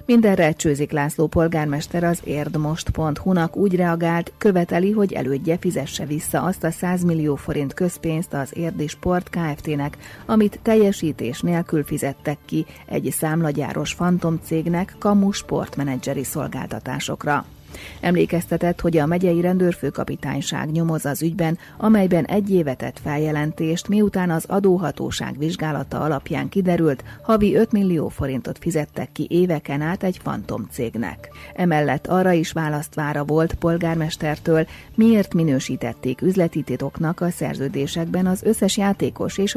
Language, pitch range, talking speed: Hungarian, 145-180 Hz, 120 wpm